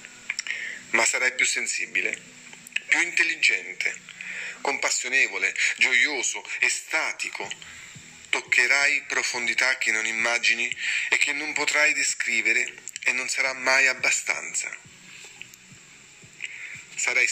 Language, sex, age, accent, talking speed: Italian, male, 40-59, native, 85 wpm